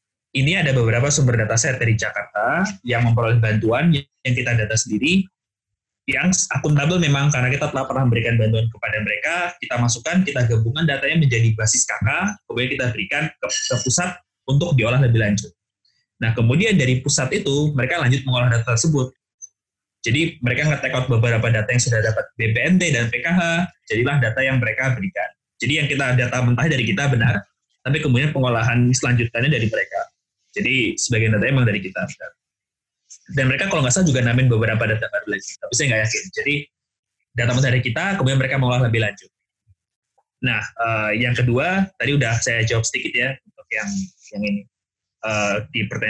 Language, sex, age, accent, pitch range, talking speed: Indonesian, male, 20-39, native, 115-140 Hz, 170 wpm